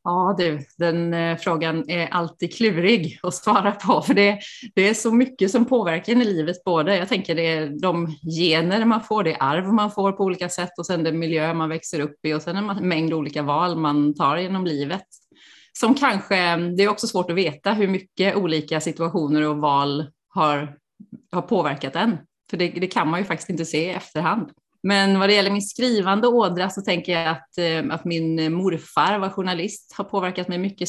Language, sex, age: Swedish, female, 30-49